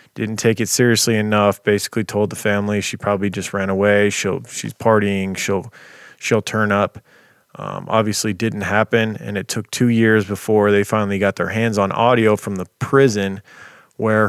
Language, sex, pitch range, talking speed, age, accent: English, male, 100-110 Hz, 175 wpm, 20-39, American